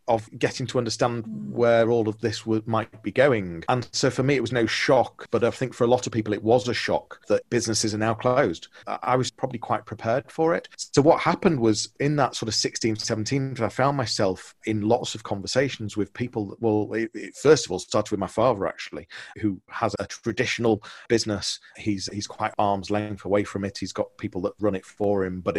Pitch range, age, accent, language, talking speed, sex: 100-120 Hz, 40-59, British, English, 225 wpm, male